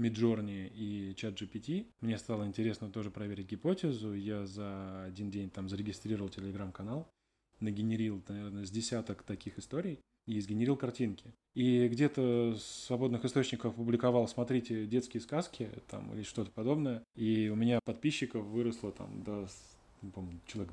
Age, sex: 10-29, male